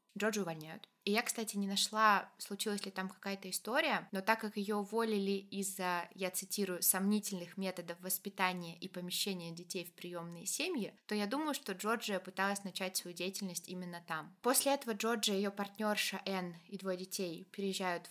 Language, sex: Russian, female